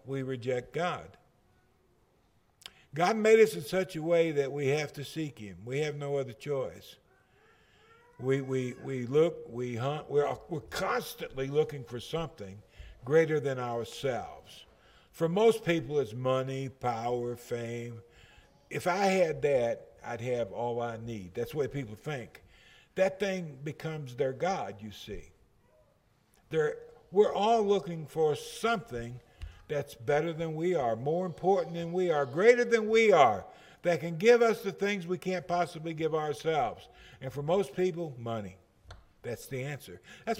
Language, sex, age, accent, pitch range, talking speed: English, male, 50-69, American, 125-180 Hz, 155 wpm